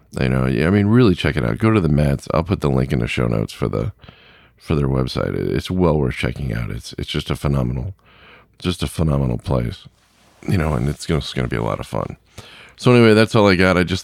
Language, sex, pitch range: English, male, 70-85 Hz